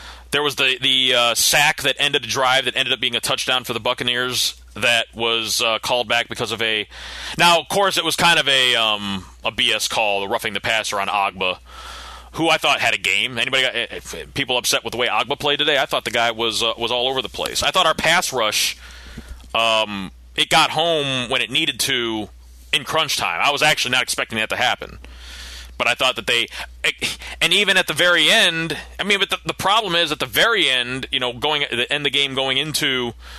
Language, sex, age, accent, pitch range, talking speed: English, male, 30-49, American, 110-160 Hz, 230 wpm